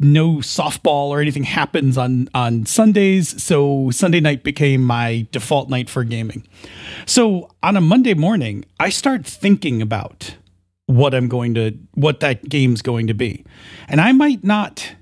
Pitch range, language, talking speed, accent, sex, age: 120-160 Hz, English, 160 wpm, American, male, 40-59